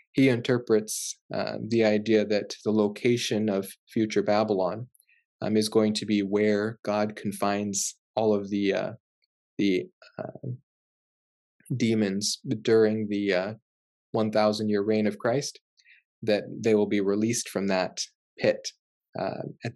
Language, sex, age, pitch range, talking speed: English, male, 20-39, 105-120 Hz, 135 wpm